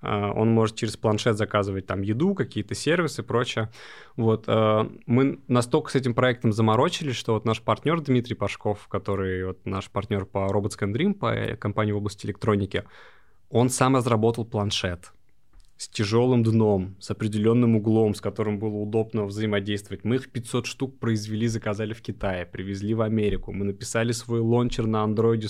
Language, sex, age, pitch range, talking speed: Russian, male, 20-39, 105-125 Hz, 160 wpm